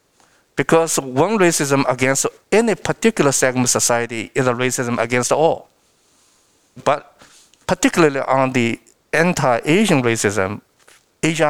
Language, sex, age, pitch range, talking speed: English, male, 50-69, 115-150 Hz, 110 wpm